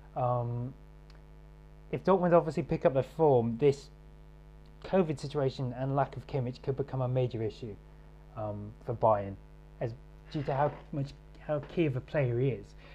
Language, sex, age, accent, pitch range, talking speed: English, male, 20-39, British, 120-155 Hz, 160 wpm